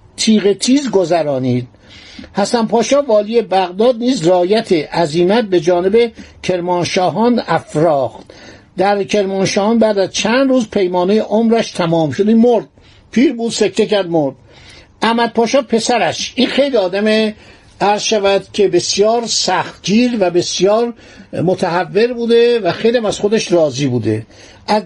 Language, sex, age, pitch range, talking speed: Persian, male, 60-79, 175-230 Hz, 130 wpm